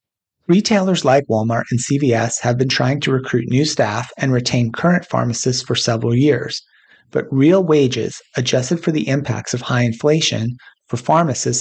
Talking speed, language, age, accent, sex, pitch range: 160 wpm, English, 30-49, American, male, 120-145 Hz